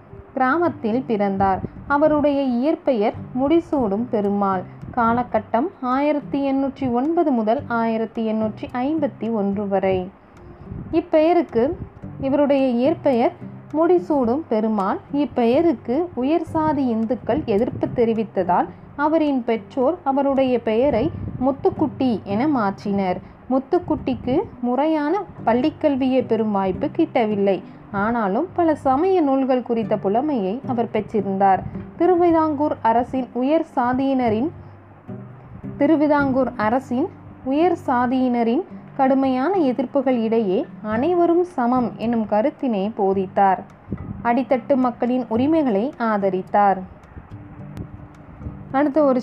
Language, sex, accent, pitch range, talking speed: Tamil, female, native, 225-295 Hz, 80 wpm